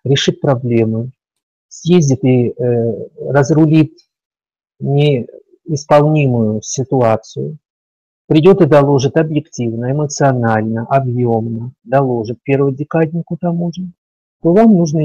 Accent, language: native, Russian